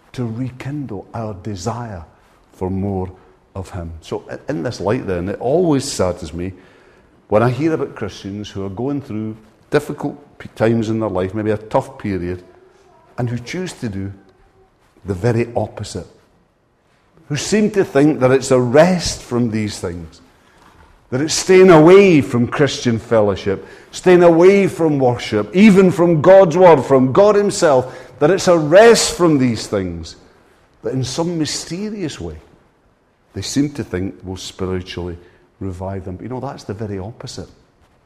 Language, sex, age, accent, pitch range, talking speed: English, male, 60-79, British, 100-145 Hz, 155 wpm